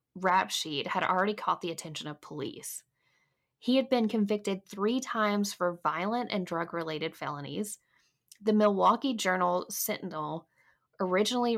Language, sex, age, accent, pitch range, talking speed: English, female, 10-29, American, 180-230 Hz, 130 wpm